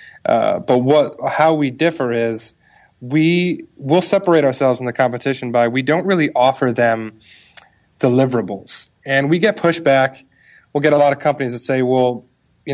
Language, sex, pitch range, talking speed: English, male, 120-145 Hz, 170 wpm